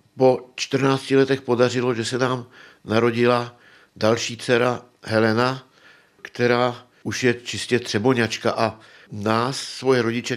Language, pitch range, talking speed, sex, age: Czech, 110-130 Hz, 115 wpm, male, 60-79